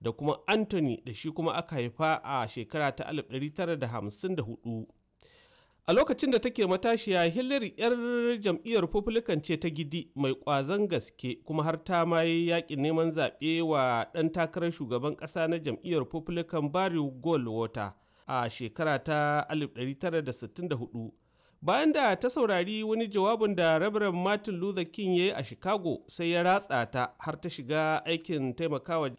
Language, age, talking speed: English, 40-59, 125 wpm